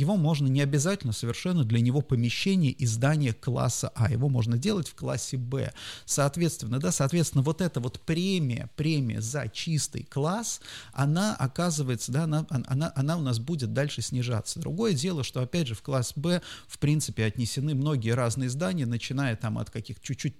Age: 30-49